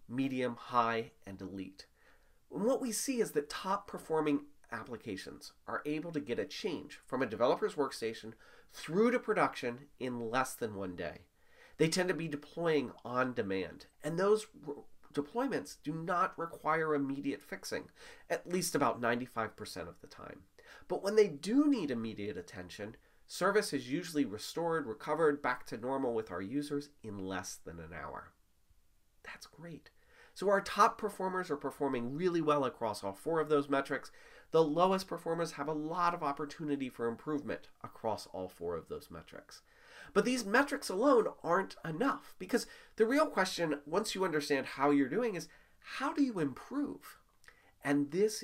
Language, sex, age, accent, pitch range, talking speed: English, male, 30-49, American, 120-180 Hz, 160 wpm